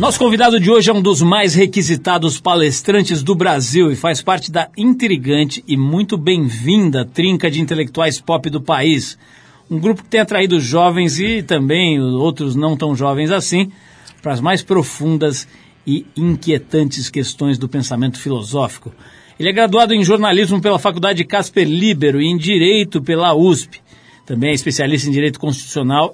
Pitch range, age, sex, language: 145-185 Hz, 50-69, male, Portuguese